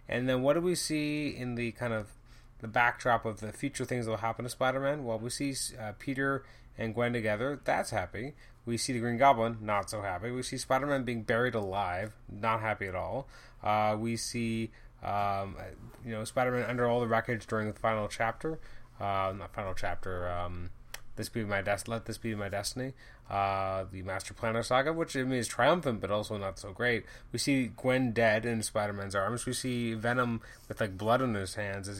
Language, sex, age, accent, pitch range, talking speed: English, male, 20-39, American, 105-125 Hz, 210 wpm